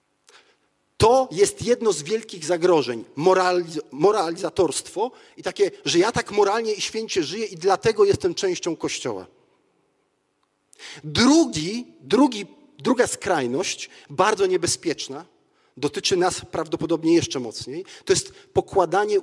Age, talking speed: 40-59, 105 wpm